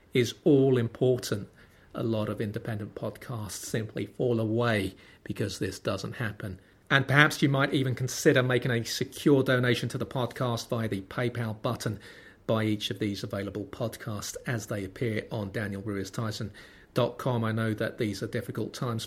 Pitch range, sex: 105-125 Hz, male